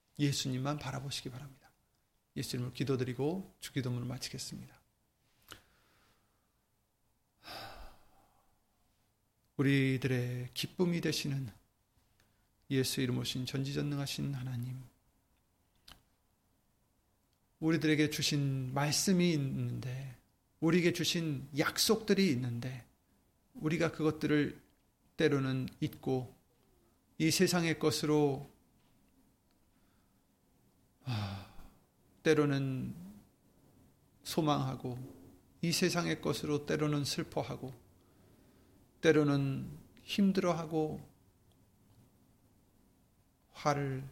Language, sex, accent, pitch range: Korean, male, native, 115-150 Hz